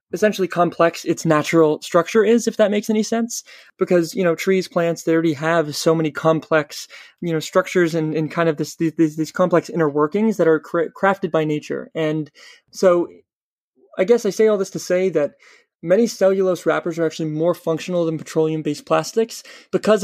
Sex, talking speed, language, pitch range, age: male, 185 wpm, English, 155-185 Hz, 20-39